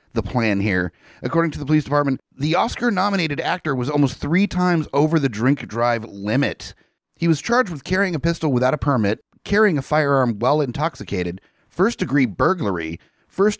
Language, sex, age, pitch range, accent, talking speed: English, male, 30-49, 110-150 Hz, American, 180 wpm